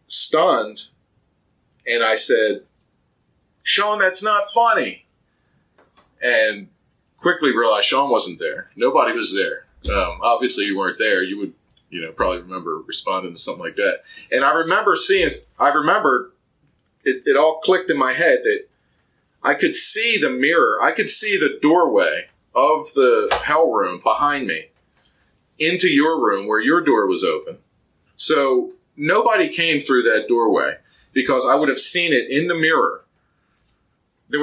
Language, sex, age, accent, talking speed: English, male, 40-59, American, 150 wpm